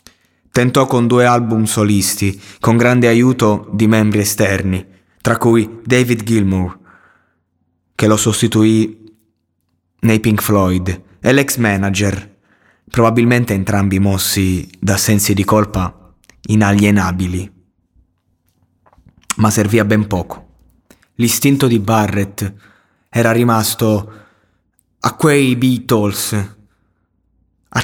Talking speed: 100 wpm